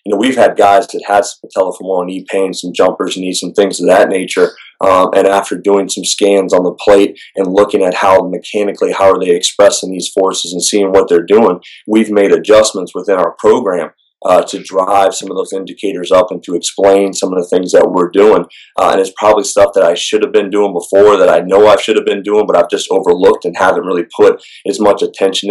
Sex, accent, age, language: male, American, 30-49, English